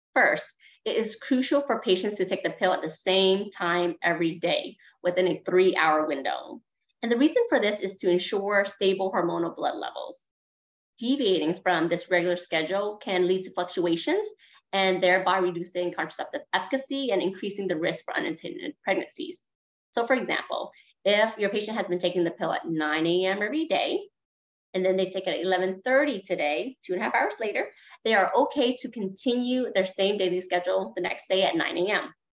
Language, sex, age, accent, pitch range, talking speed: English, female, 30-49, American, 175-210 Hz, 180 wpm